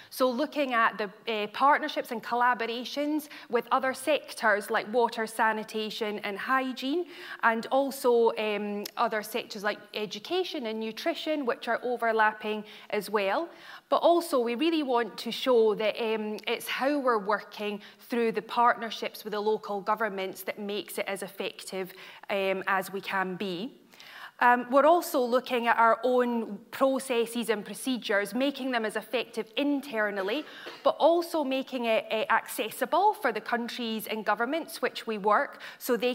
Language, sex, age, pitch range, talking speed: English, female, 20-39, 210-250 Hz, 150 wpm